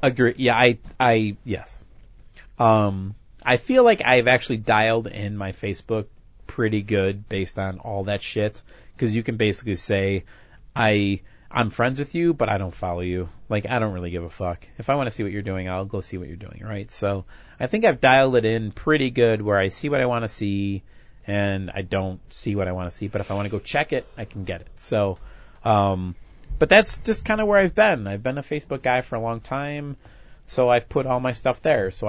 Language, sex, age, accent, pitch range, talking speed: English, male, 30-49, American, 100-125 Hz, 230 wpm